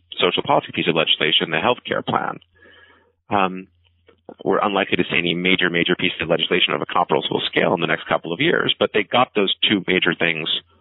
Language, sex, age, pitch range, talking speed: English, male, 30-49, 85-95 Hz, 205 wpm